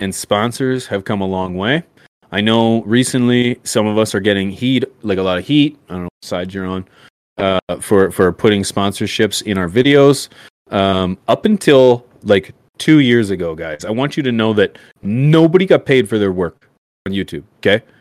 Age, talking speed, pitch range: 30-49, 195 wpm, 95-125 Hz